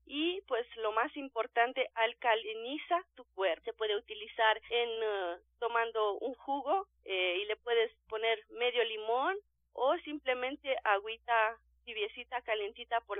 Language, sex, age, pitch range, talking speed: Spanish, female, 40-59, 210-265 Hz, 130 wpm